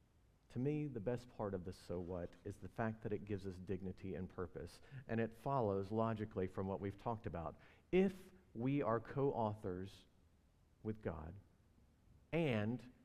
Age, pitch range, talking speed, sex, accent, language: 50-69, 100-125 Hz, 160 wpm, male, American, English